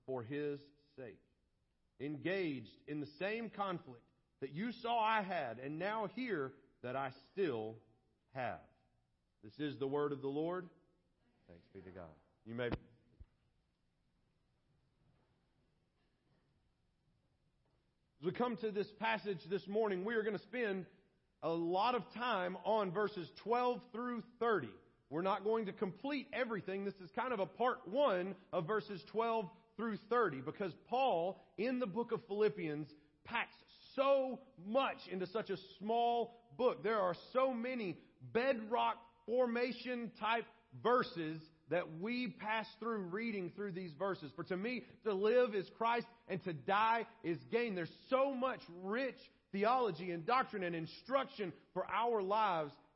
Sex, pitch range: male, 160-230 Hz